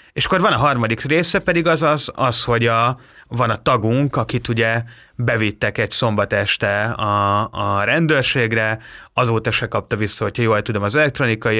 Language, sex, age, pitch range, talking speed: Hungarian, male, 30-49, 105-125 Hz, 170 wpm